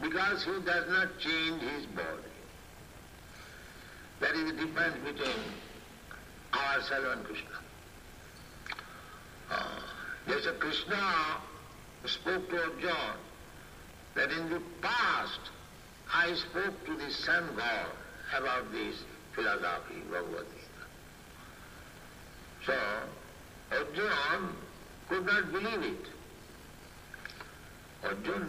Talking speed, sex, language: 90 wpm, male, Italian